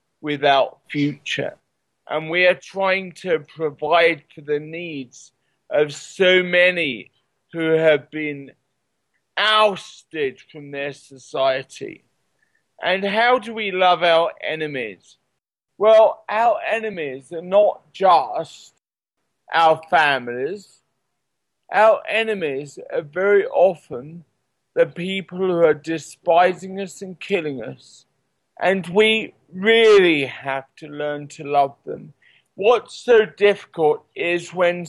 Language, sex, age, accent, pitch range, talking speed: English, male, 40-59, British, 145-190 Hz, 110 wpm